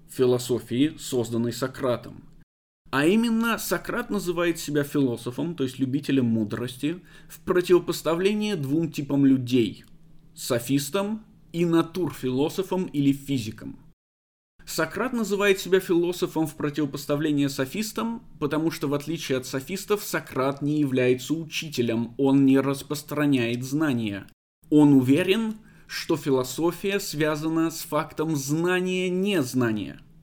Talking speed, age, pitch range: 105 wpm, 20-39, 130-170 Hz